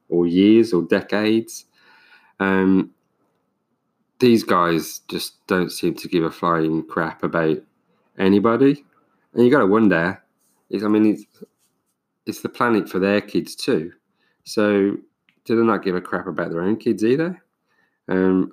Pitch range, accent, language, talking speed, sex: 95-110 Hz, British, English, 150 wpm, male